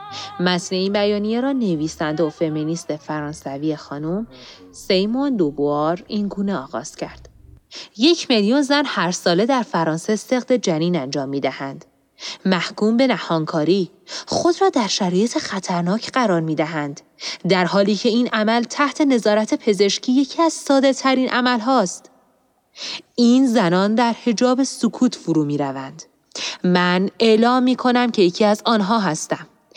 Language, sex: Persian, female